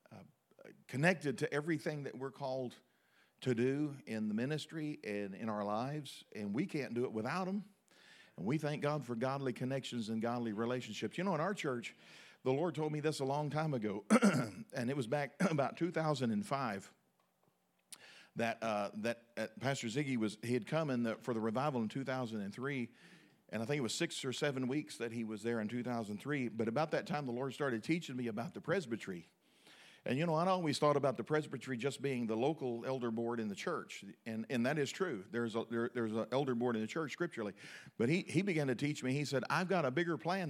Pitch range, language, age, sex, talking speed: 115-150 Hz, English, 50-69, male, 210 wpm